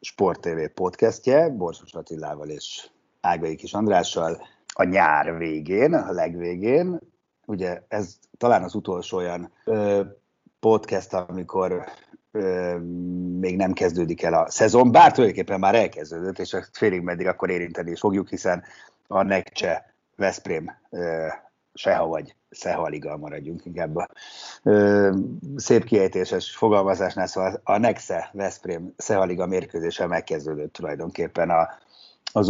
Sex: male